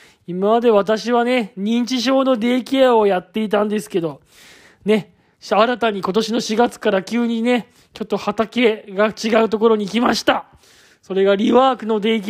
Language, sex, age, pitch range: Japanese, male, 20-39, 195-240 Hz